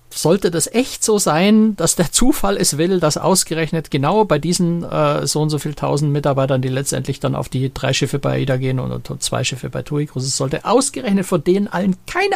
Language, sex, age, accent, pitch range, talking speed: German, male, 60-79, German, 135-175 Hz, 220 wpm